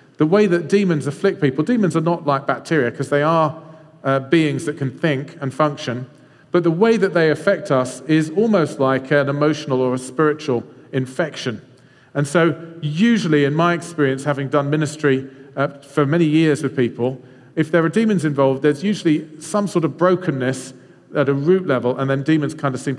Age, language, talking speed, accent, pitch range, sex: 40-59, English, 190 wpm, British, 135-165 Hz, male